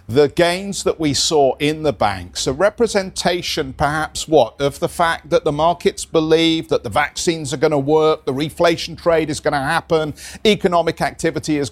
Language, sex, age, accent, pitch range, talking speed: English, male, 50-69, British, 125-170 Hz, 185 wpm